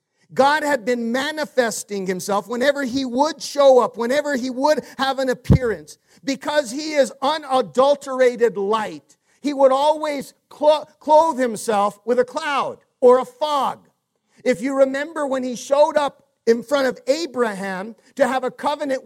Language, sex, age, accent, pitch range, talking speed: English, male, 50-69, American, 235-280 Hz, 150 wpm